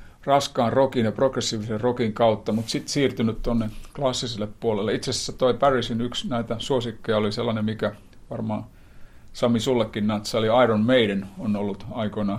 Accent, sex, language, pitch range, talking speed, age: native, male, Finnish, 105-125 Hz, 155 wpm, 50-69